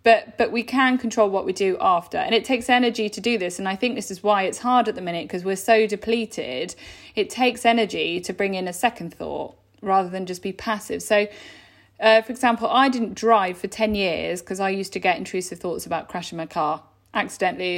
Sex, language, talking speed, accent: female, English, 225 wpm, British